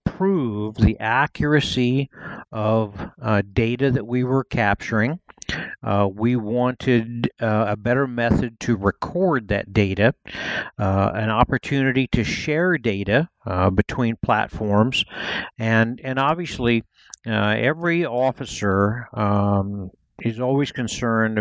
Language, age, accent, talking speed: English, 60-79, American, 110 wpm